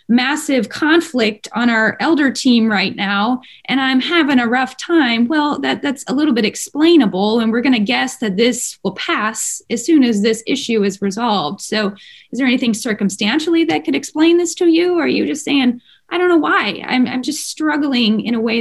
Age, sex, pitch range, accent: 20-39, female, 215-280 Hz, American